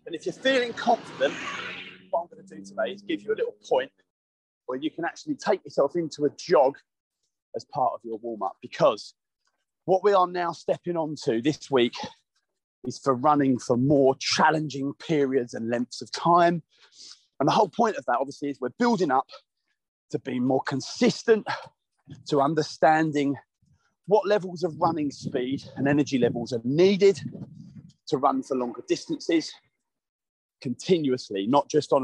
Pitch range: 130-180 Hz